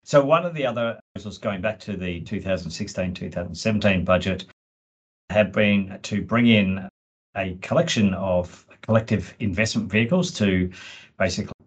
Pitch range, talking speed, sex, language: 95-110 Hz, 130 wpm, male, English